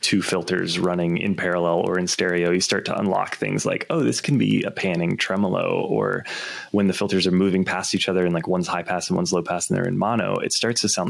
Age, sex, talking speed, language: 20-39, male, 255 wpm, English